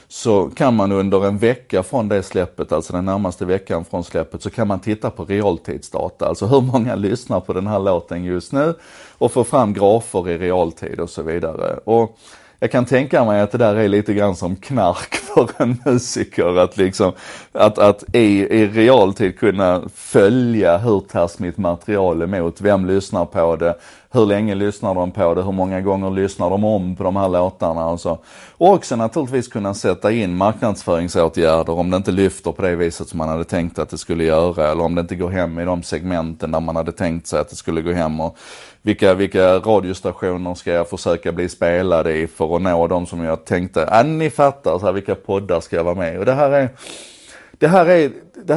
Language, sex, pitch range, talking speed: Swedish, male, 85-115 Hz, 205 wpm